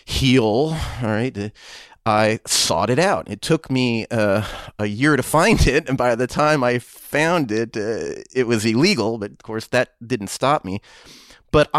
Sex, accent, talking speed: male, American, 180 wpm